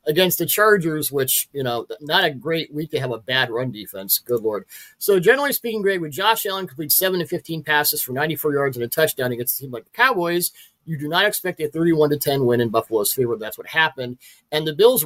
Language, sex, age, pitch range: English, male, 40-59, 130-180 Hz